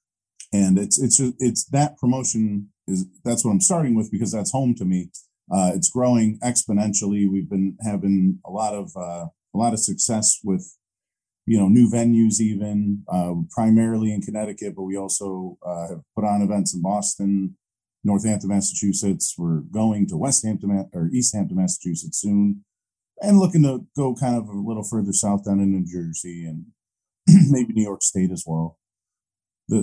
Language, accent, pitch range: English, American, 95-115 Hz